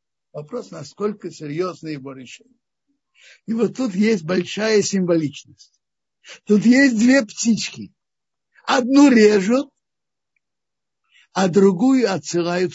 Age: 60-79